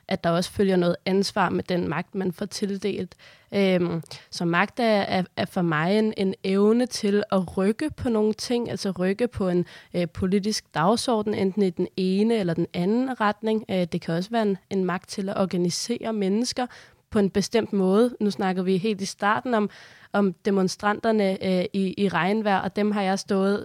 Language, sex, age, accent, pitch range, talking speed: Danish, female, 20-39, native, 180-215 Hz, 180 wpm